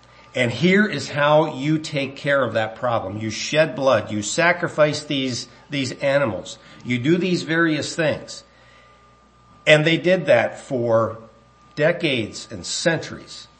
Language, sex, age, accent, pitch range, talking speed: English, male, 50-69, American, 110-145 Hz, 135 wpm